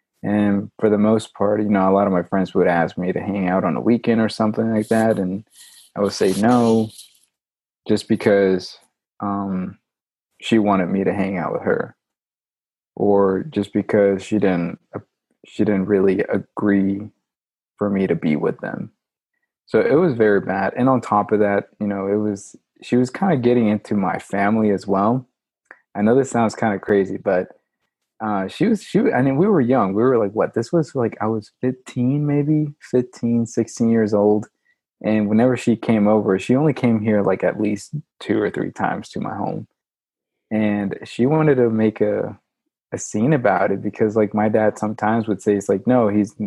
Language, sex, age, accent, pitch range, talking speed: English, male, 20-39, American, 100-115 Hz, 200 wpm